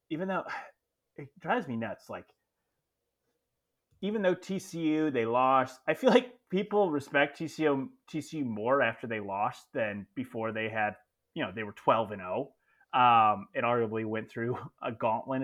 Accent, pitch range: American, 110-150 Hz